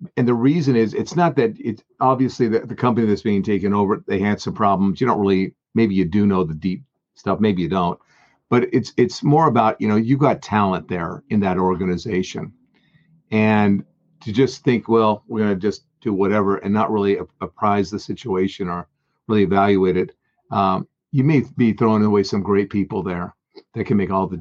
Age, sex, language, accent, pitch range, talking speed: 50-69, male, English, American, 100-120 Hz, 205 wpm